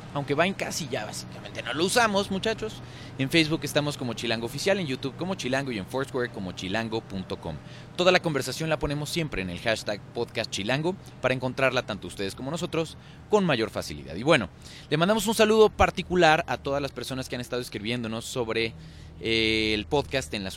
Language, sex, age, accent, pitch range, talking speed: Spanish, male, 30-49, Mexican, 100-145 Hz, 190 wpm